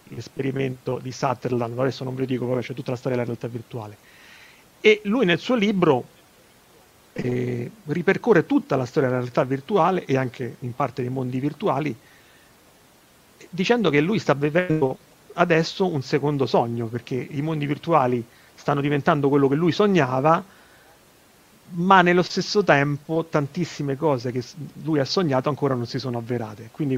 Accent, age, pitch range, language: native, 40-59, 125-175 Hz, Italian